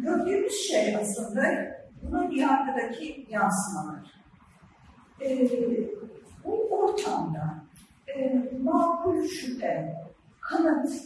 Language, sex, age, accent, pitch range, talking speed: Turkish, female, 50-69, native, 235-350 Hz, 70 wpm